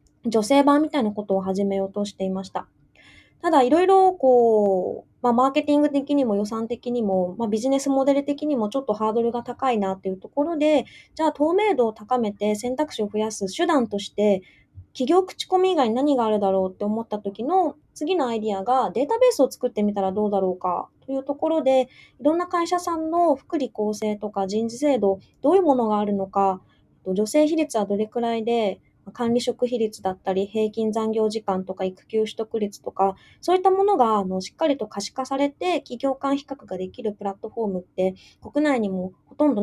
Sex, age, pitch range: female, 20-39, 200-280 Hz